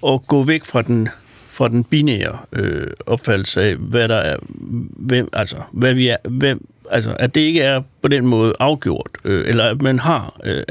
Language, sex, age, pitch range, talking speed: Danish, male, 60-79, 125-165 Hz, 195 wpm